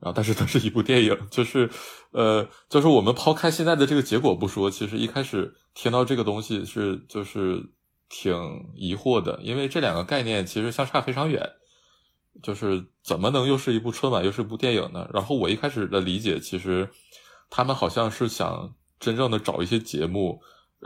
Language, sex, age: Chinese, male, 20-39